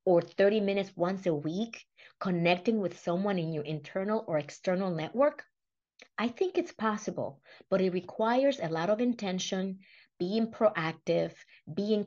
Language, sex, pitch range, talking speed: English, female, 175-235 Hz, 145 wpm